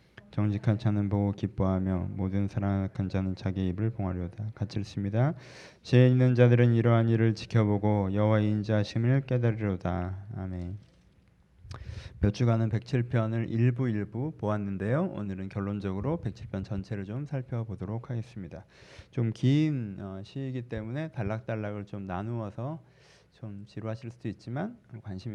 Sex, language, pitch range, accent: male, Korean, 100-135 Hz, native